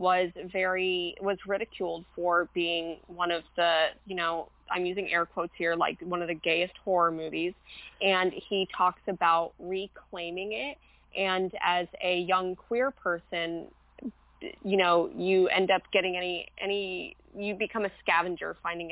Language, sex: English, female